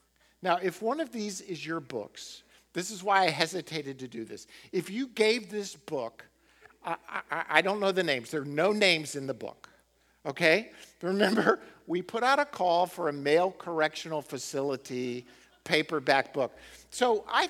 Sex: male